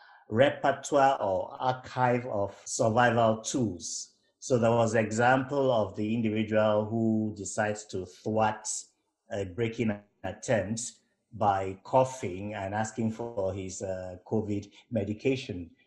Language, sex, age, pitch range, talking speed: English, male, 50-69, 105-125 Hz, 115 wpm